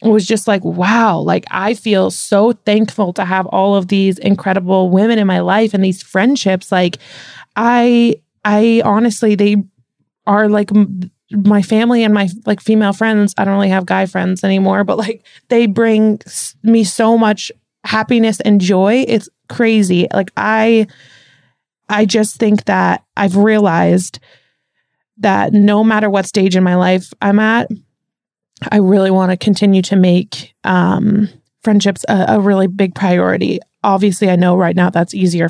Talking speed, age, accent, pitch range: 165 wpm, 20-39, American, 185-215 Hz